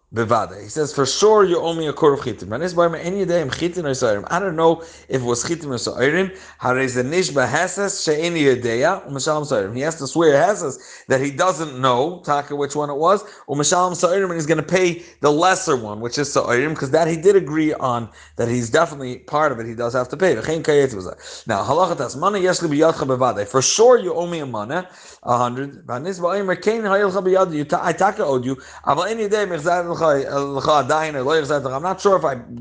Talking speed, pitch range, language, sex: 145 wpm, 140-185 Hz, English, male